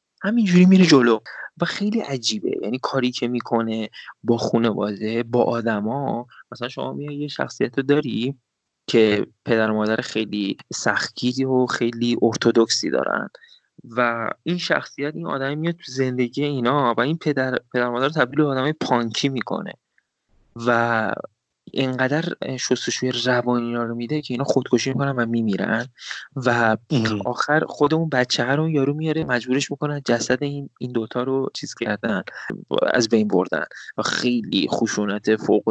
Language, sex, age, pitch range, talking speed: Persian, male, 20-39, 115-135 Hz, 140 wpm